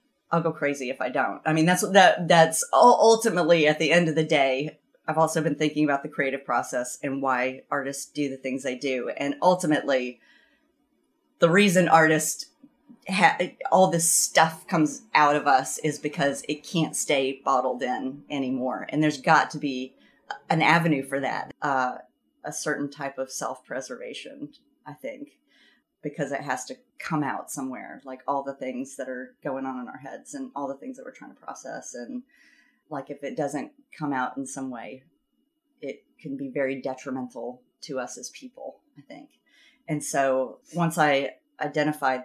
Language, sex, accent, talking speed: English, female, American, 180 wpm